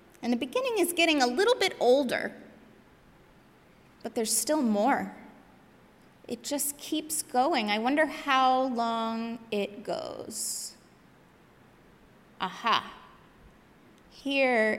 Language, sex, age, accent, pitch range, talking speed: English, female, 20-39, American, 235-320 Hz, 100 wpm